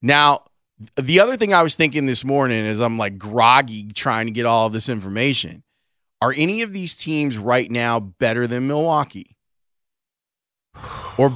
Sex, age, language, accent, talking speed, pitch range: male, 30-49, English, American, 160 wpm, 120-150 Hz